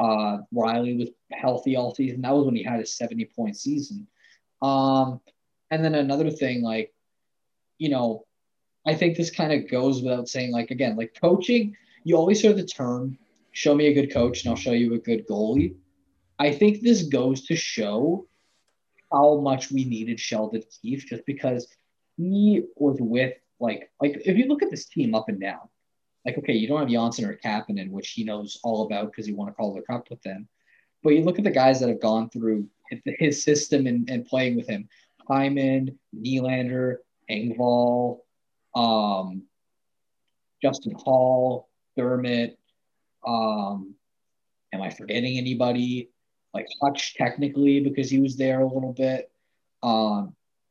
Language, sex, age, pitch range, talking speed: English, male, 20-39, 115-140 Hz, 170 wpm